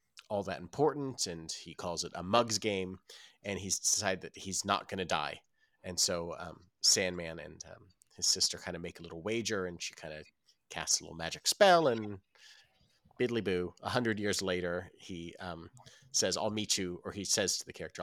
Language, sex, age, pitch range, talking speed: English, male, 30-49, 85-105 Hz, 205 wpm